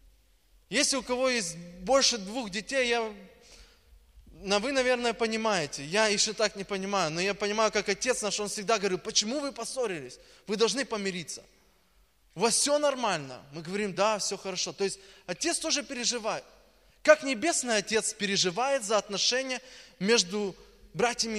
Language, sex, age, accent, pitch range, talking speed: Russian, male, 20-39, native, 170-255 Hz, 150 wpm